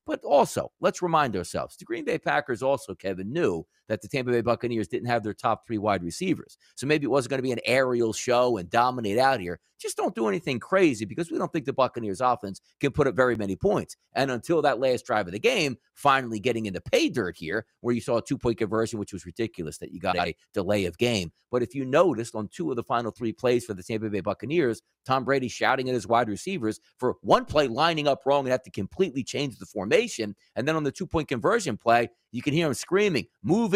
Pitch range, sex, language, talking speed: 110-140 Hz, male, English, 240 wpm